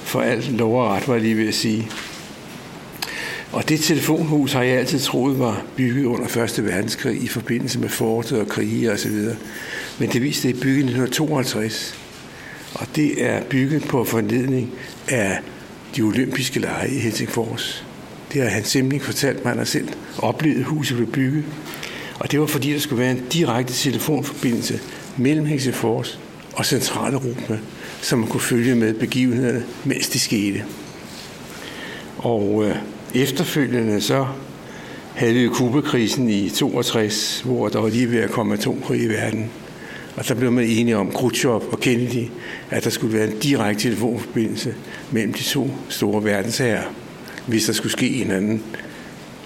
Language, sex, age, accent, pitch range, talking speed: Danish, male, 60-79, native, 110-135 Hz, 160 wpm